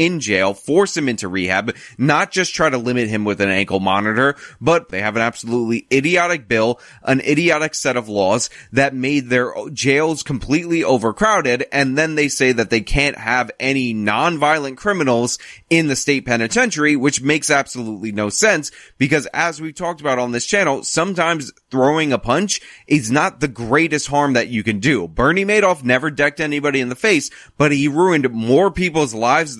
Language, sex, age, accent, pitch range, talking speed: English, male, 20-39, American, 120-160 Hz, 180 wpm